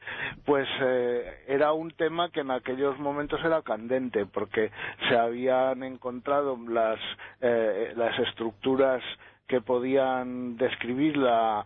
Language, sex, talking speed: Spanish, male, 115 wpm